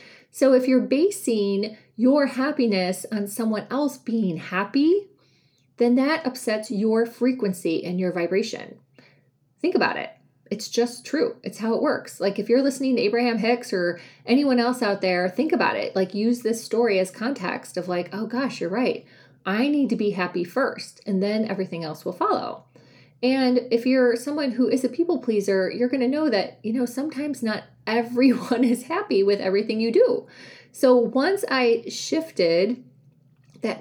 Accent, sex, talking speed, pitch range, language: American, female, 175 wpm, 190-255 Hz, English